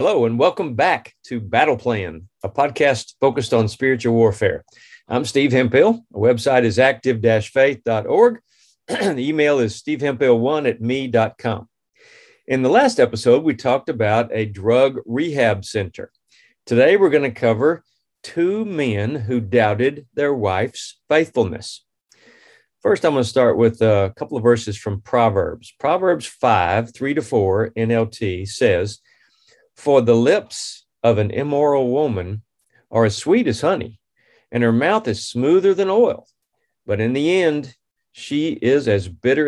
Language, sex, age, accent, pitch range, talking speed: English, male, 50-69, American, 105-135 Hz, 145 wpm